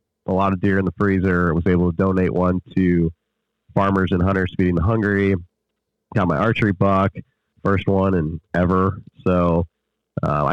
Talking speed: 165 wpm